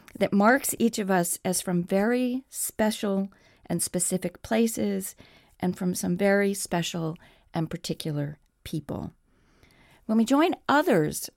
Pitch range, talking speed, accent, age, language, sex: 175-230 Hz, 125 wpm, American, 40-59, English, female